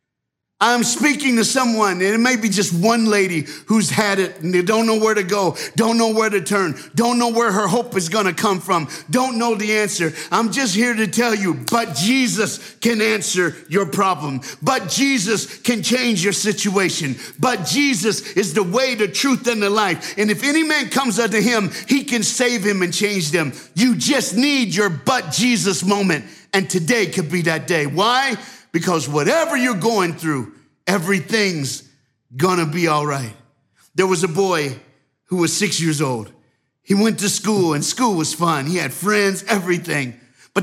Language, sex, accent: English, male, American